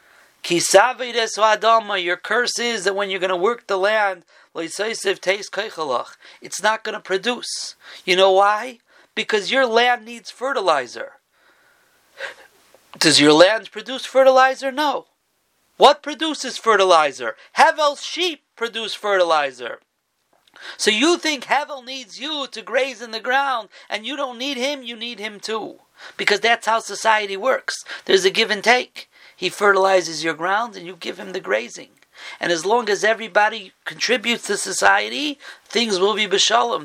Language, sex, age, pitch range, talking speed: English, male, 40-59, 195-260 Hz, 145 wpm